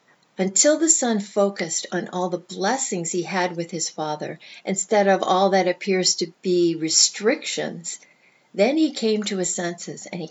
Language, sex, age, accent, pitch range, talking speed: English, female, 50-69, American, 165-205 Hz, 170 wpm